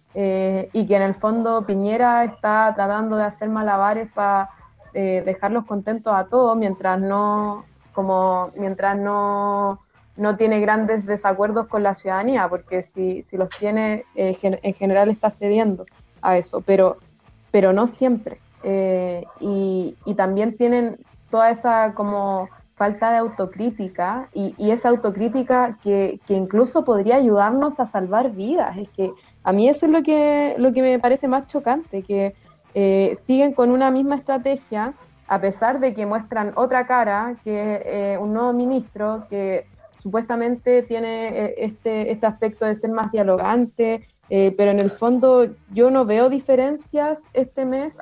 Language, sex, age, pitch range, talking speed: Spanish, female, 20-39, 200-245 Hz, 150 wpm